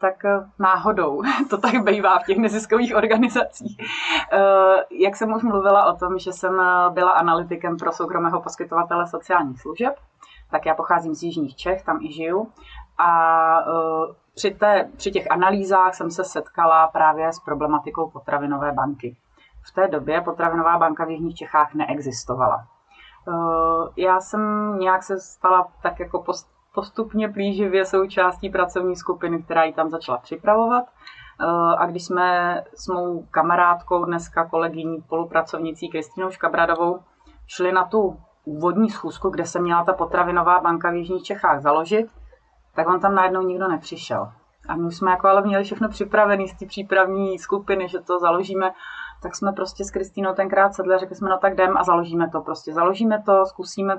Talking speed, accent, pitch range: 155 wpm, native, 165-195 Hz